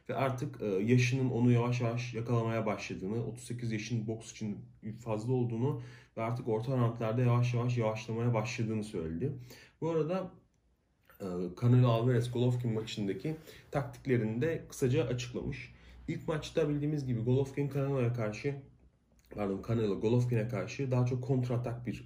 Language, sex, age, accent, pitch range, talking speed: Turkish, male, 30-49, native, 110-140 Hz, 135 wpm